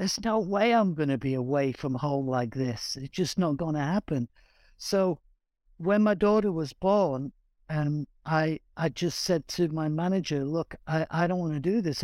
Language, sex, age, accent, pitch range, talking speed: English, male, 60-79, British, 150-195 Hz, 200 wpm